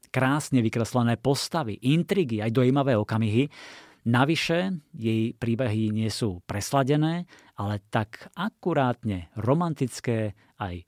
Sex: male